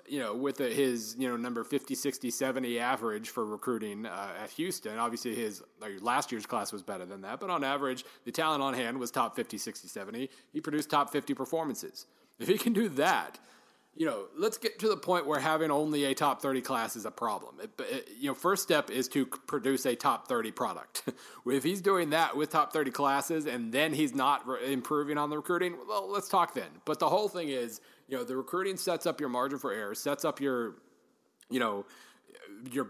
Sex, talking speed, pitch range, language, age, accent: male, 215 wpm, 125-155 Hz, English, 30-49, American